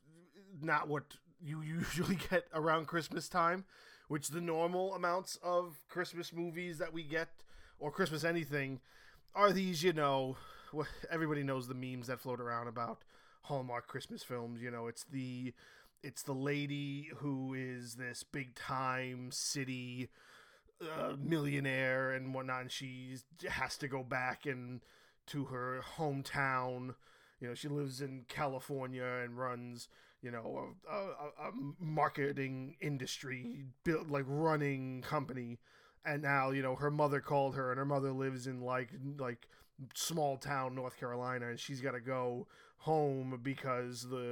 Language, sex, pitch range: English, male, 125-150 Hz